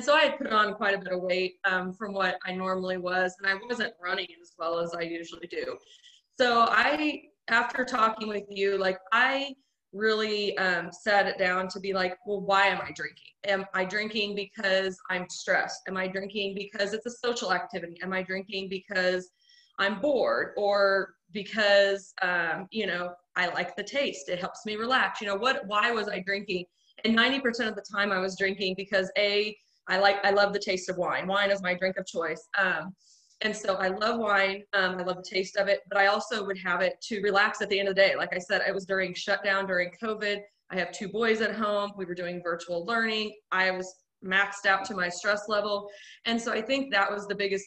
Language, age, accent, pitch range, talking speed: English, 20-39, American, 185-210 Hz, 220 wpm